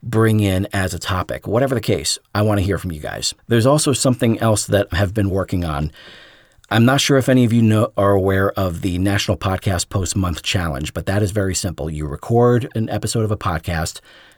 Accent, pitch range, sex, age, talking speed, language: American, 90-105 Hz, male, 40-59, 225 wpm, English